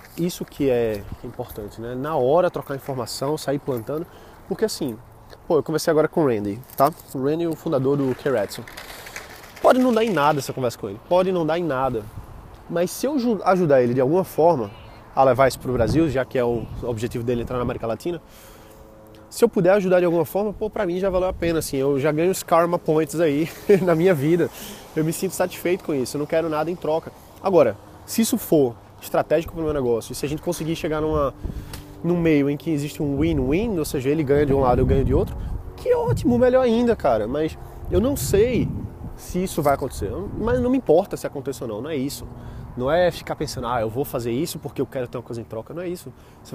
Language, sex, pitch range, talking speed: Portuguese, male, 125-170 Hz, 230 wpm